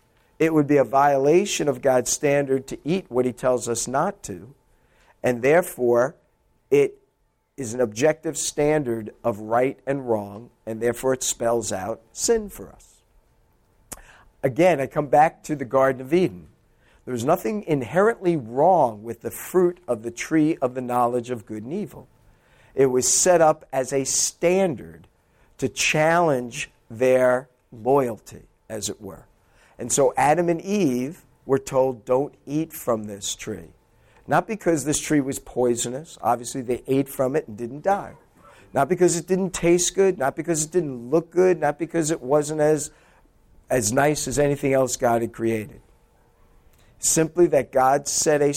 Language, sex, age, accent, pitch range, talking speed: English, male, 50-69, American, 120-160 Hz, 165 wpm